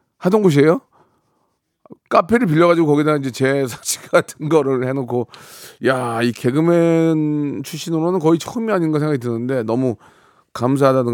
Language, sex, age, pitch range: Korean, male, 30-49, 105-140 Hz